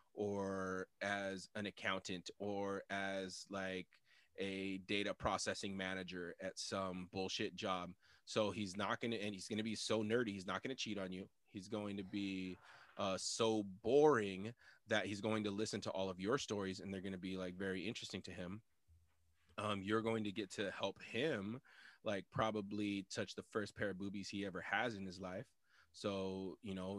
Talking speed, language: 190 wpm, English